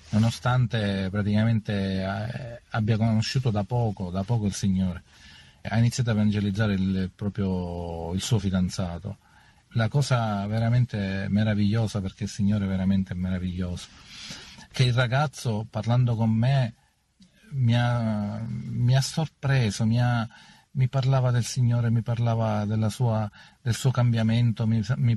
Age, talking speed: 40-59, 130 wpm